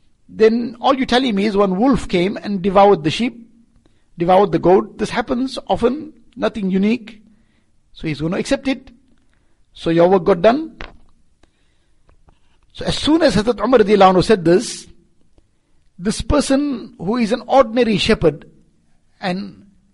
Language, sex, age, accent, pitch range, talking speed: English, male, 60-79, Indian, 175-225 Hz, 140 wpm